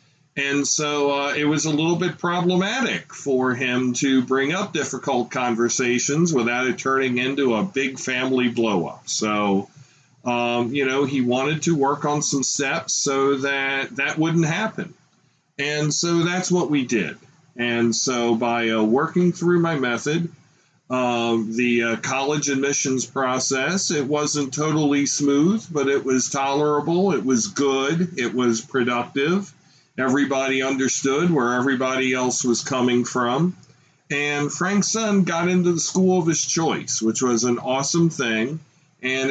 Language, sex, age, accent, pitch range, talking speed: English, male, 40-59, American, 125-155 Hz, 150 wpm